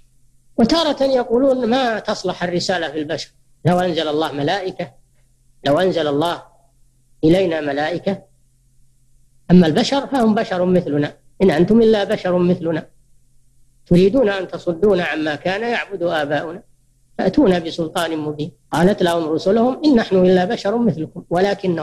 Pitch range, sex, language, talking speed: 135-195 Hz, female, Arabic, 125 wpm